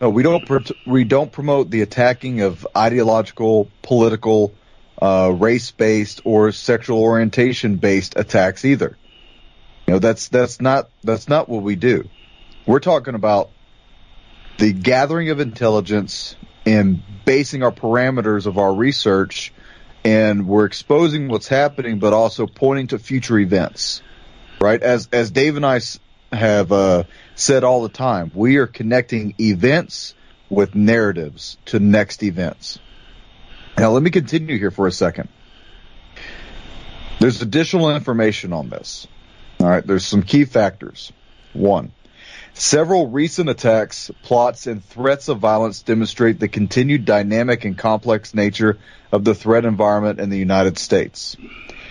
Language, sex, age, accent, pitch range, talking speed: English, male, 30-49, American, 105-125 Hz, 135 wpm